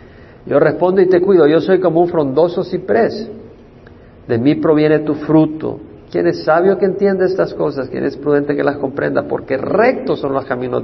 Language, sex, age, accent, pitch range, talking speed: Spanish, male, 50-69, Mexican, 120-170 Hz, 190 wpm